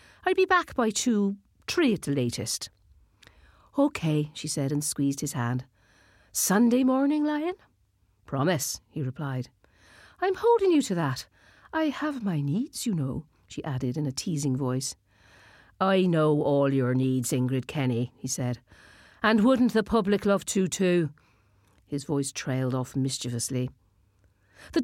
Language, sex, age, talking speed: English, female, 50-69, 145 wpm